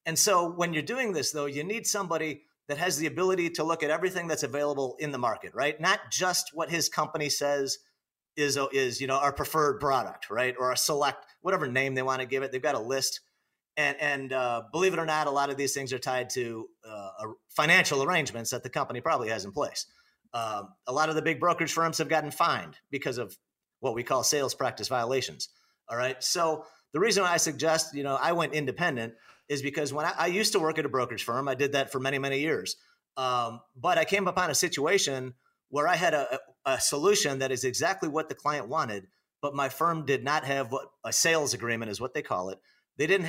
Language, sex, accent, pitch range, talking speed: English, male, American, 135-165 Hz, 225 wpm